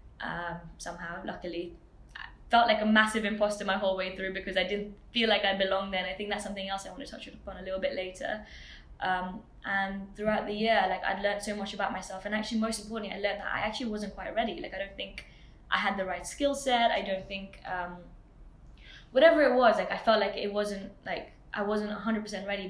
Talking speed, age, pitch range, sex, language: 235 wpm, 10-29, 190-215 Hz, female, English